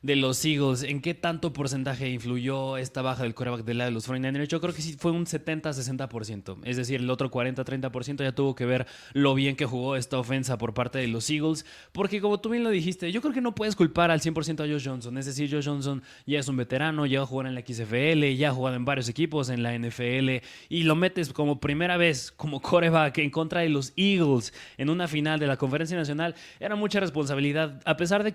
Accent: Mexican